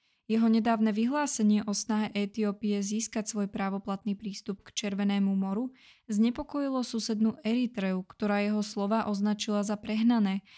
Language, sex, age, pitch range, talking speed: Czech, female, 20-39, 200-225 Hz, 125 wpm